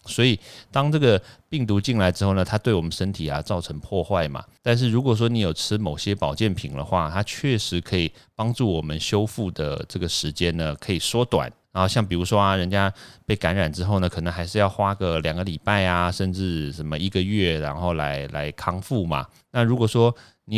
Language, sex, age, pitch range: Chinese, male, 30-49, 80-105 Hz